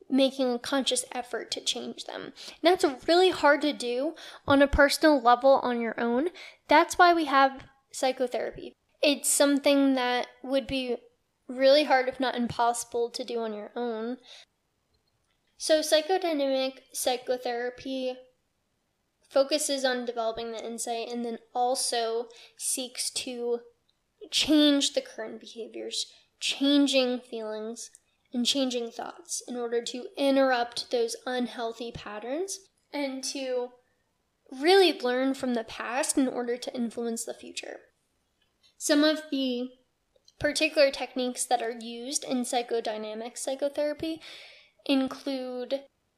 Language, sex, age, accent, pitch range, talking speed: English, female, 10-29, American, 240-285 Hz, 120 wpm